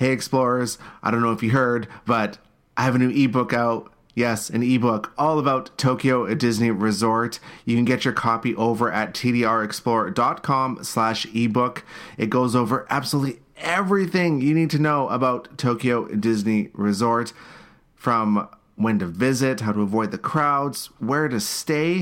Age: 30-49